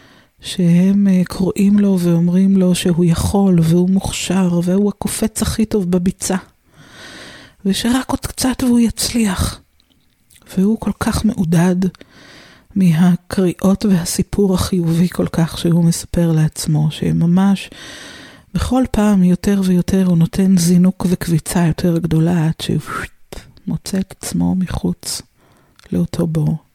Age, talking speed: 50-69, 110 wpm